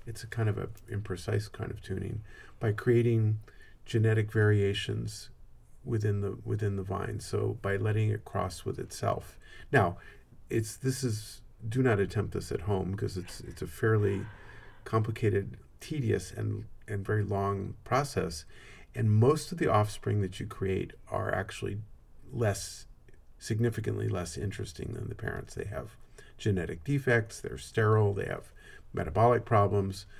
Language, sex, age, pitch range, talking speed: English, male, 50-69, 100-115 Hz, 145 wpm